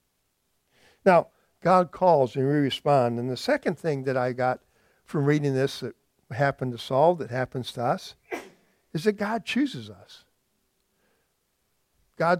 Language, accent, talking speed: English, American, 145 wpm